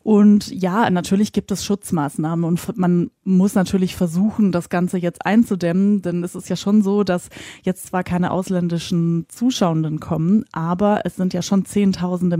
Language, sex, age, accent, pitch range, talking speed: German, female, 20-39, German, 170-185 Hz, 165 wpm